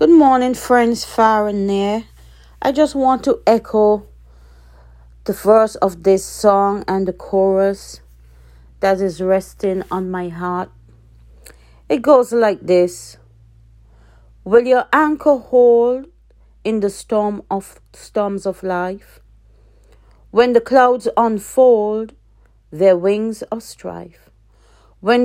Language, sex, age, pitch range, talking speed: English, female, 40-59, 155-230 Hz, 115 wpm